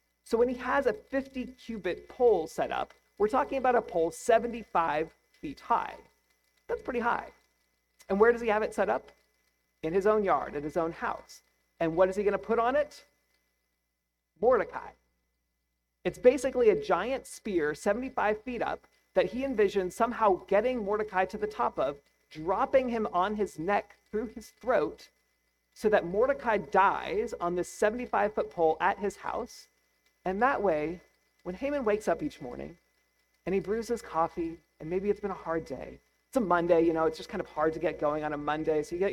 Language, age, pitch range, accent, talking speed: English, 40-59, 160-240 Hz, American, 185 wpm